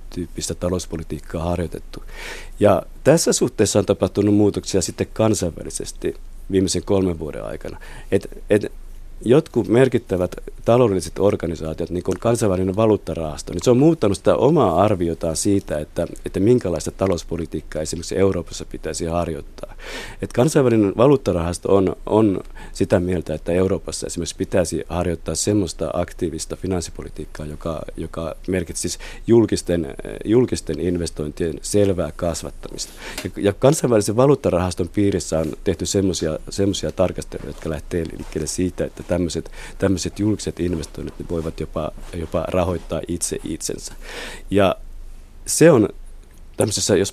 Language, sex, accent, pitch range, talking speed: Finnish, male, native, 85-100 Hz, 115 wpm